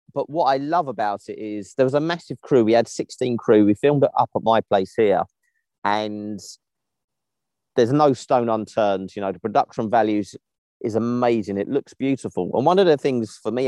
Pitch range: 105-145 Hz